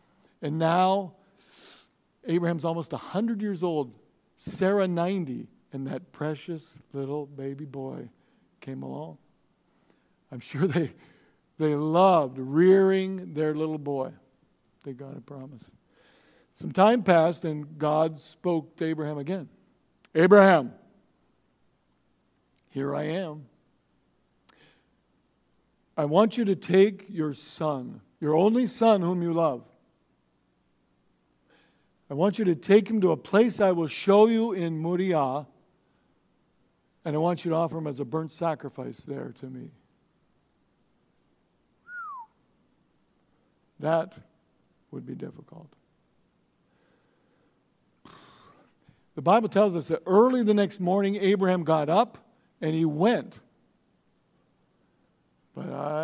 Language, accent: English, American